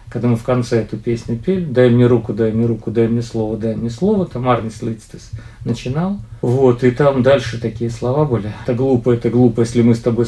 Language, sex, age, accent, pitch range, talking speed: Ukrainian, male, 40-59, native, 110-125 Hz, 220 wpm